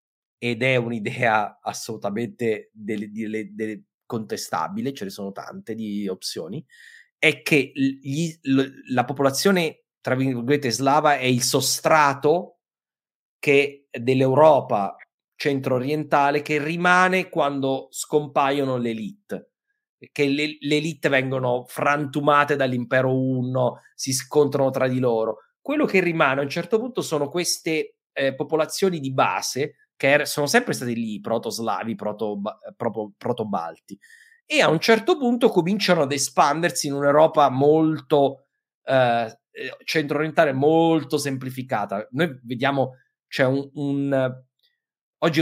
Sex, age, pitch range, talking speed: male, 30-49, 120-155 Hz, 120 wpm